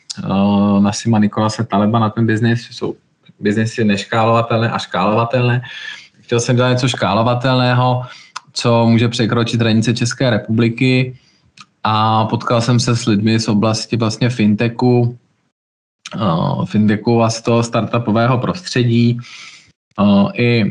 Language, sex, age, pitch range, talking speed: Slovak, male, 20-39, 105-120 Hz, 120 wpm